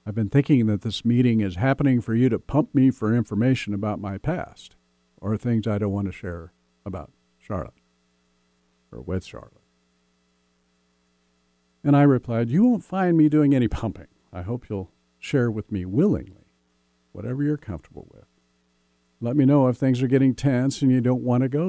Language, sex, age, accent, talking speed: English, male, 50-69, American, 180 wpm